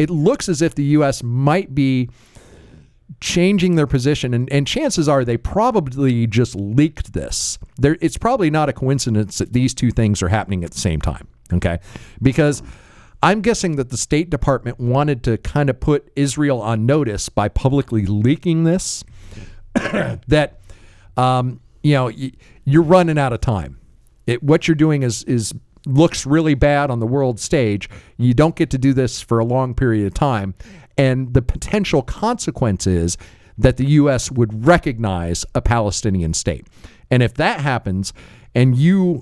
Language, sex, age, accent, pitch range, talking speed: English, male, 50-69, American, 110-145 Hz, 165 wpm